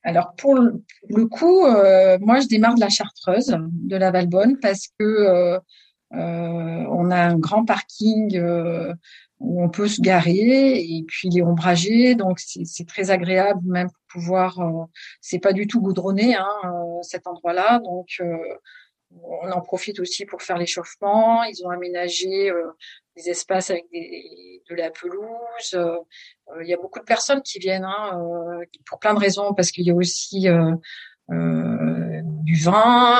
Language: French